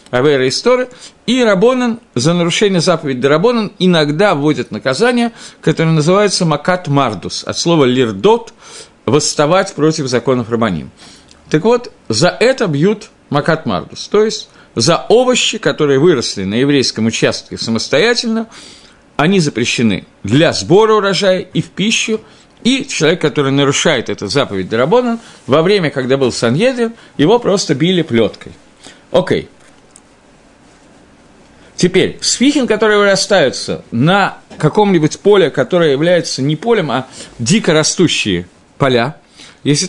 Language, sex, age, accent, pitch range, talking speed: Russian, male, 50-69, native, 135-210 Hz, 120 wpm